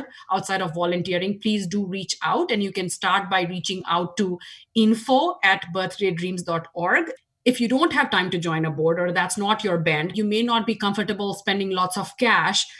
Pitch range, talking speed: 175-225 Hz, 190 wpm